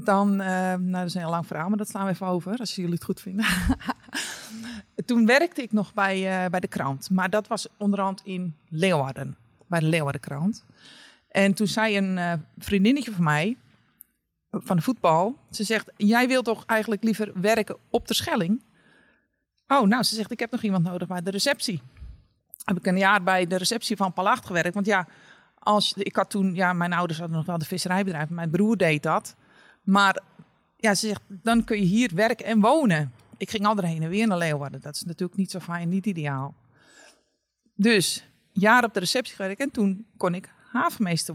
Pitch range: 175-220 Hz